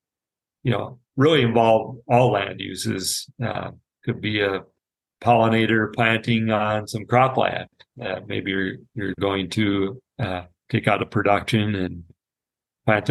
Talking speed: 135 wpm